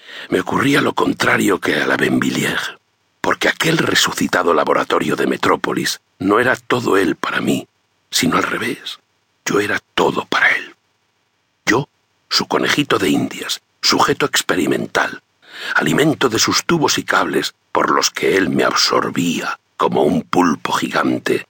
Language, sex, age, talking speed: Spanish, male, 60-79, 140 wpm